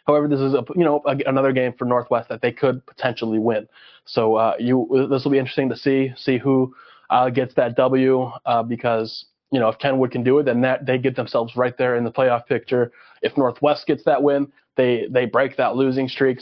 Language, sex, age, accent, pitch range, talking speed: English, male, 20-39, American, 120-135 Hz, 225 wpm